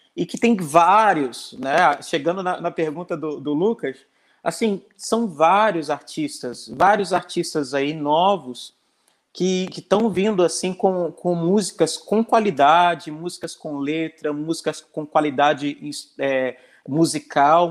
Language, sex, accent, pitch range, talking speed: Portuguese, male, Brazilian, 160-220 Hz, 125 wpm